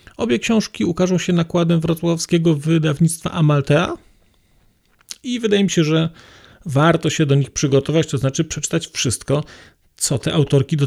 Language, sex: Polish, male